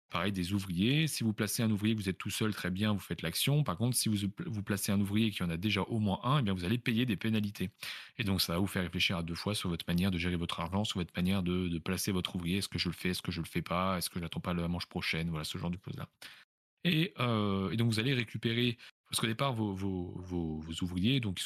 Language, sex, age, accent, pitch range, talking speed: French, male, 30-49, French, 90-115 Hz, 300 wpm